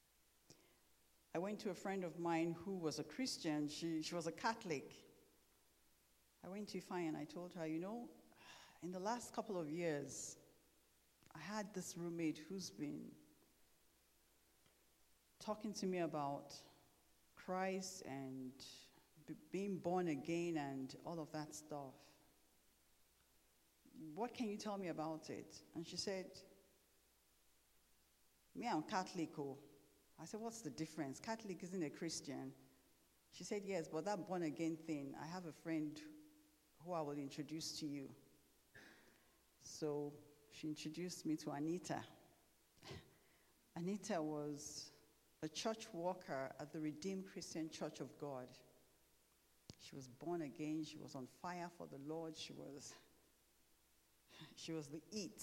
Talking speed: 135 wpm